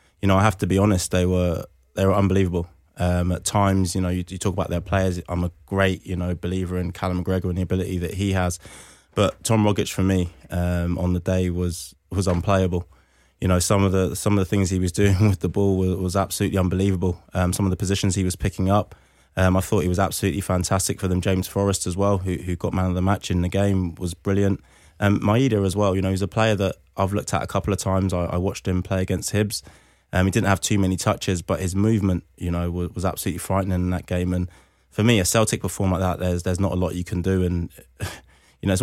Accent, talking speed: British, 255 wpm